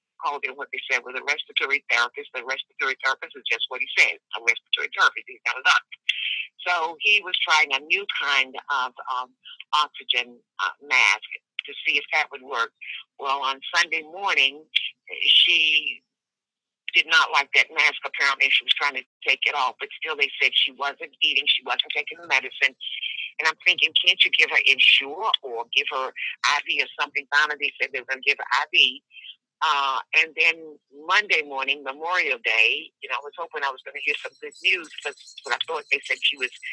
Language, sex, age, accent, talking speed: English, female, 50-69, American, 200 wpm